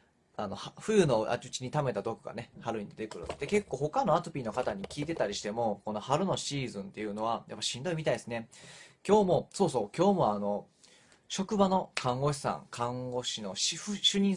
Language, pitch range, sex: Japanese, 110-165 Hz, male